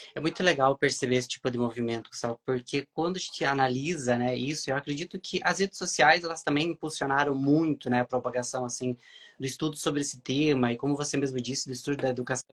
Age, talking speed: 20-39, 210 wpm